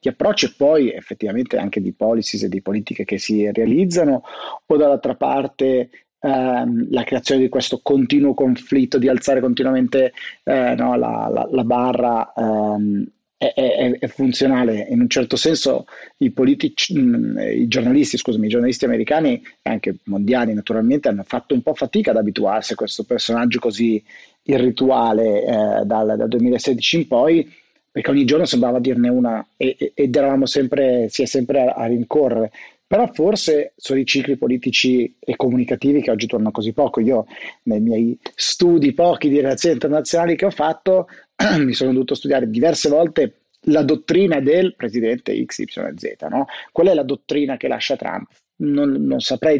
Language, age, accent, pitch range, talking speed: Italian, 30-49, native, 120-150 Hz, 160 wpm